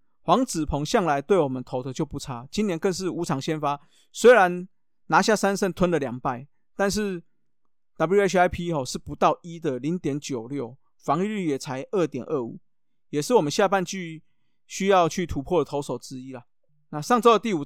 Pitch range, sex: 140-185 Hz, male